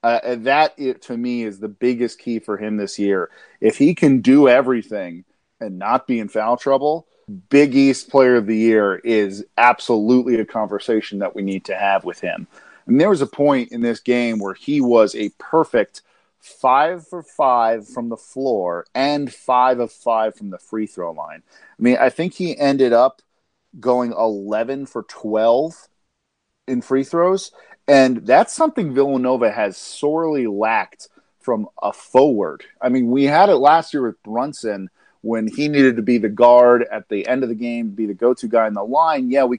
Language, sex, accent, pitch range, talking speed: English, male, American, 110-140 Hz, 190 wpm